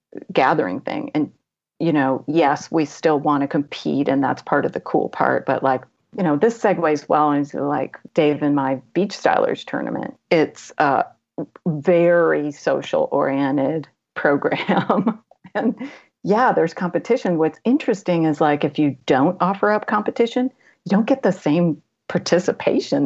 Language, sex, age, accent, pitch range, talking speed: English, female, 40-59, American, 150-195 Hz, 155 wpm